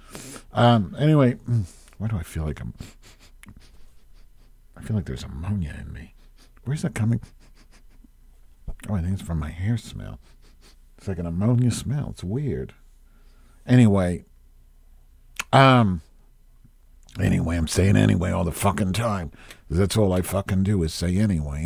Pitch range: 80-110 Hz